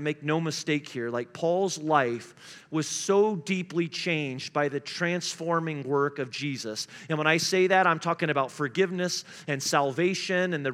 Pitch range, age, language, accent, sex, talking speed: 155-185 Hz, 40-59, English, American, male, 170 wpm